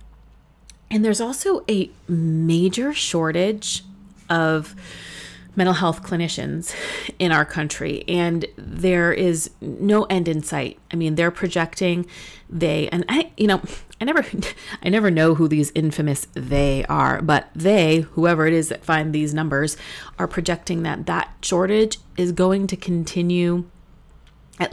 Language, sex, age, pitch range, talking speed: English, female, 30-49, 160-205 Hz, 140 wpm